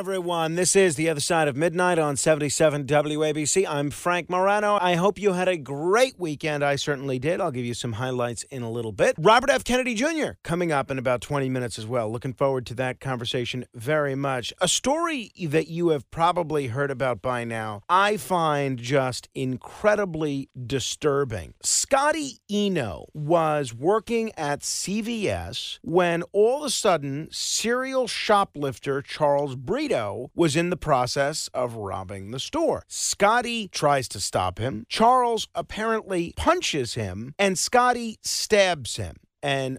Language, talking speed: English, 155 wpm